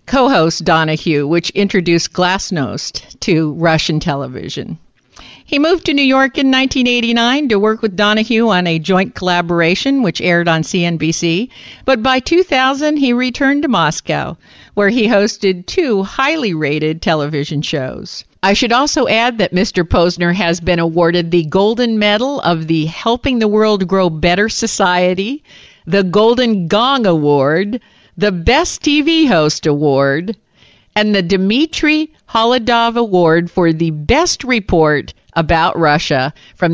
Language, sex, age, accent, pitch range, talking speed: English, female, 50-69, American, 165-235 Hz, 135 wpm